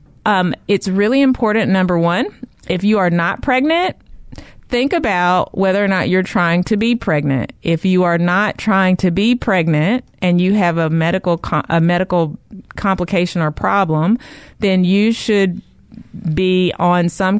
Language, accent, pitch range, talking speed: English, American, 165-200 Hz, 160 wpm